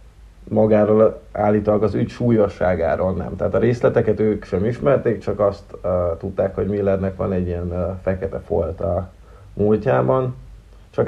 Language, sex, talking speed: Hungarian, male, 140 wpm